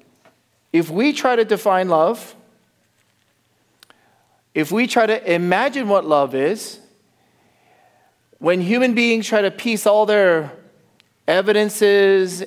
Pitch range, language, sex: 140-190 Hz, English, male